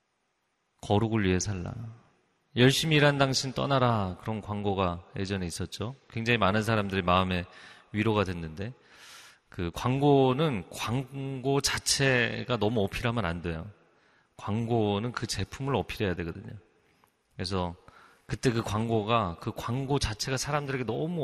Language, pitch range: Korean, 100-135 Hz